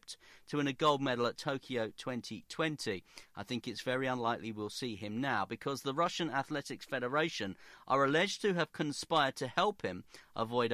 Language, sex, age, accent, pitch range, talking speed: English, male, 40-59, British, 110-140 Hz, 175 wpm